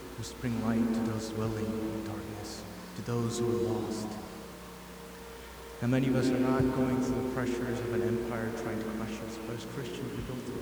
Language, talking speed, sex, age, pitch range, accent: English, 205 wpm, male, 30-49, 115-125 Hz, American